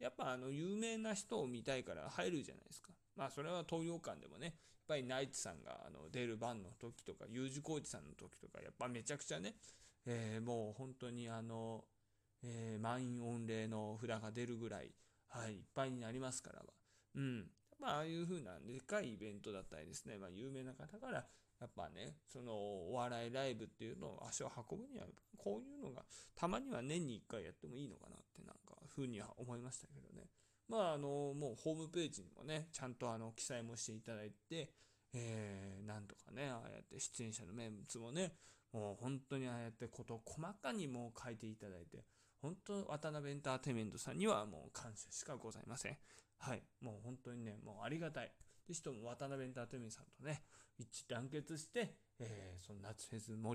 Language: Japanese